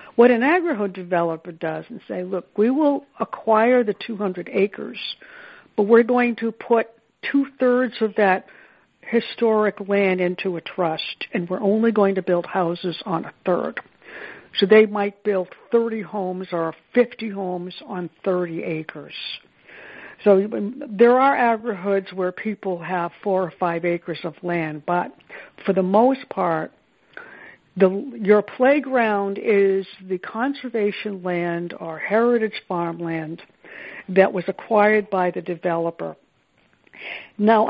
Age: 60-79